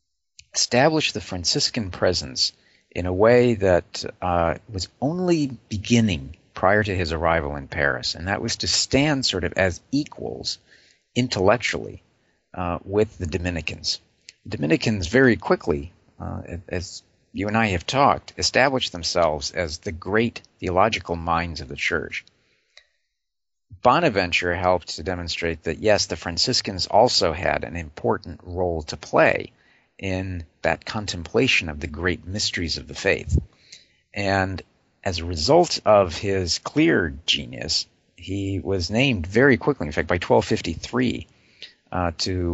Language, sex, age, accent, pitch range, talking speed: English, male, 50-69, American, 85-105 Hz, 135 wpm